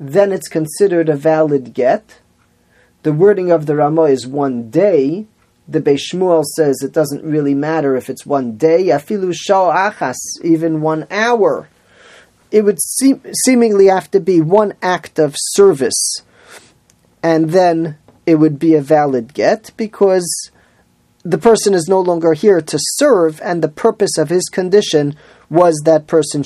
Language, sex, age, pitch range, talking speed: English, male, 40-59, 150-190 Hz, 145 wpm